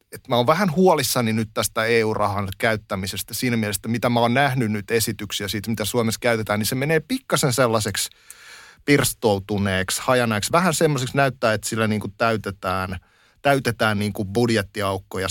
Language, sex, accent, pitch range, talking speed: Finnish, male, native, 105-130 Hz, 150 wpm